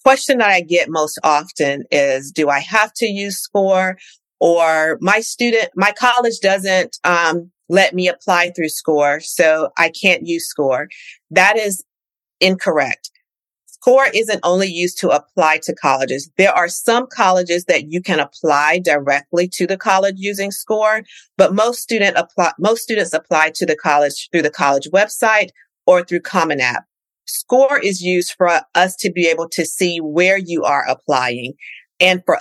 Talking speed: 165 wpm